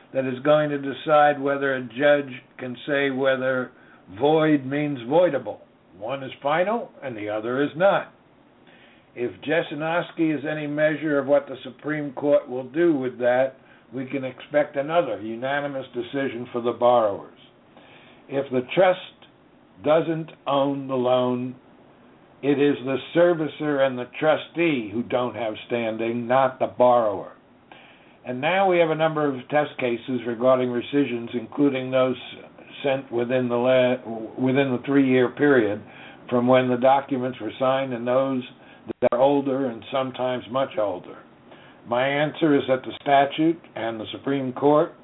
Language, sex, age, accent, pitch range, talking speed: English, male, 60-79, American, 125-145 Hz, 150 wpm